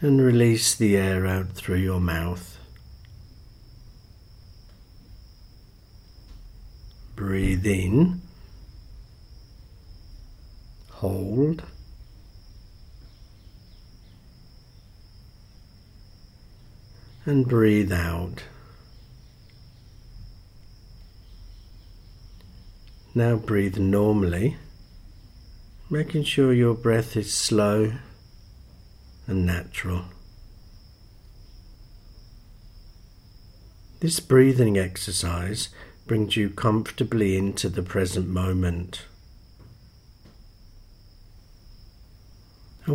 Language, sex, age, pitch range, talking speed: English, male, 60-79, 95-110 Hz, 50 wpm